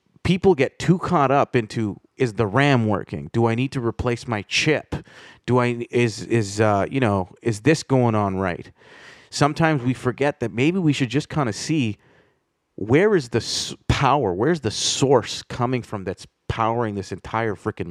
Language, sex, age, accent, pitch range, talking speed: English, male, 30-49, American, 105-135 Hz, 185 wpm